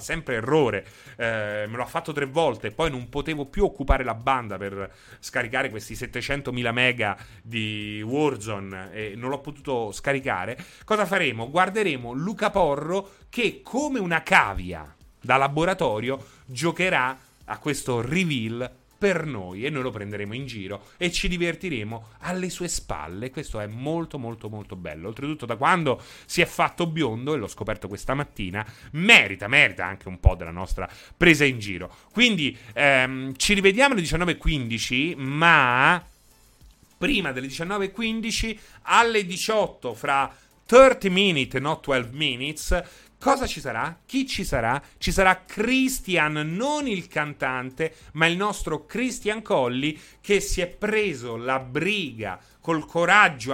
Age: 30-49